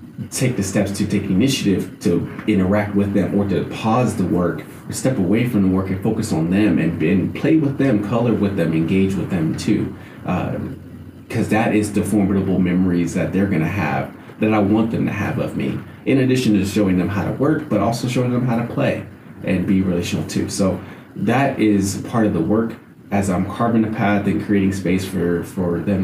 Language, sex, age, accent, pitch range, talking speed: English, male, 30-49, American, 95-115 Hz, 215 wpm